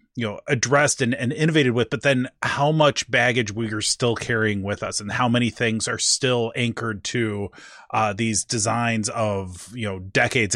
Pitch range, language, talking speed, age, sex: 110-135 Hz, English, 190 wpm, 30-49, male